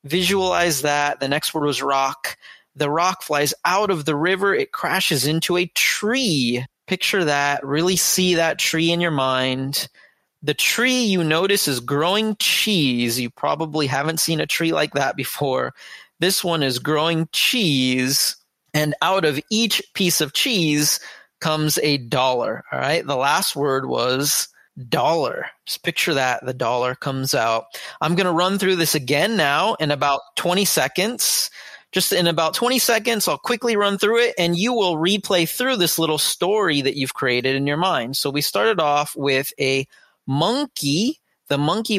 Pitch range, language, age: 140-190 Hz, English, 30-49